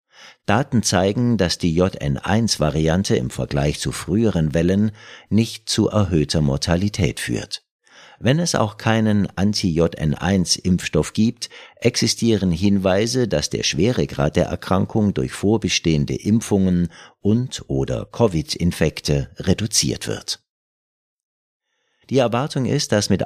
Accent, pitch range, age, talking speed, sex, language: German, 85-115 Hz, 50-69, 105 wpm, male, German